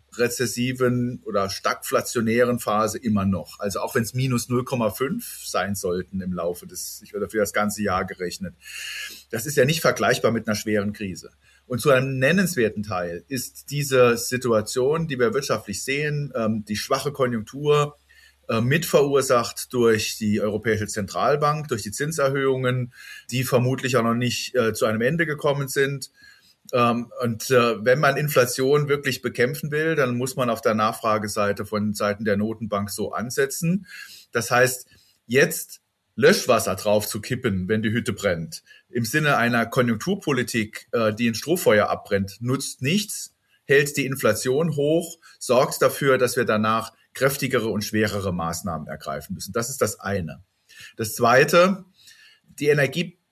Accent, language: German, German